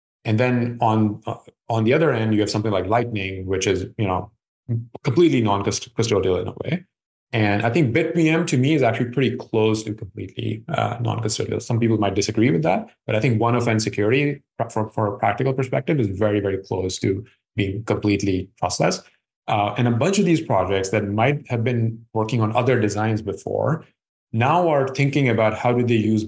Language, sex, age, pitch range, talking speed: English, male, 30-49, 100-125 Hz, 190 wpm